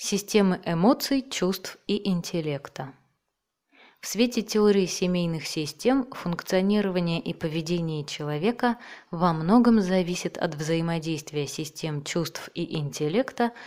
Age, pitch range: 20-39, 155-205 Hz